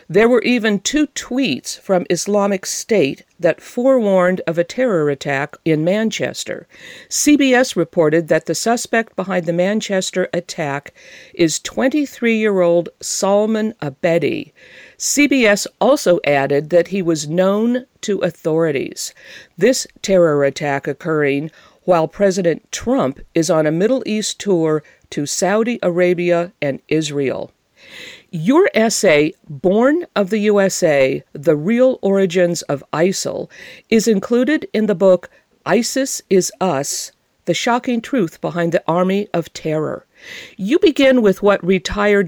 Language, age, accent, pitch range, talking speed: English, 50-69, American, 165-220 Hz, 125 wpm